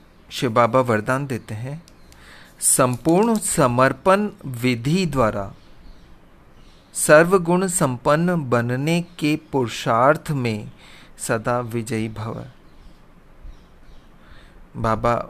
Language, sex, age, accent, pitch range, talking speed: Hindi, male, 40-59, native, 120-170 Hz, 75 wpm